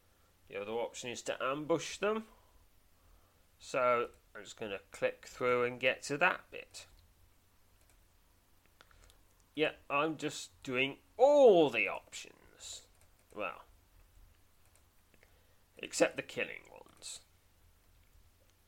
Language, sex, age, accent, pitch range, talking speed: English, male, 30-49, British, 90-125 Hz, 100 wpm